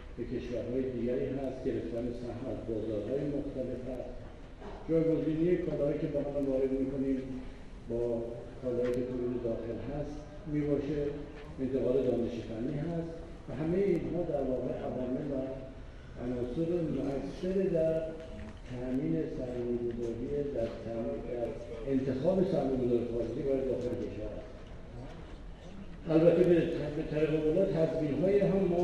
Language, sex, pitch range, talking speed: Persian, male, 120-155 Hz, 110 wpm